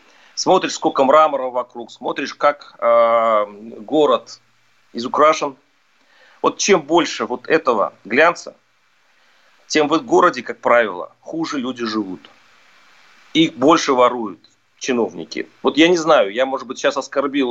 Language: Russian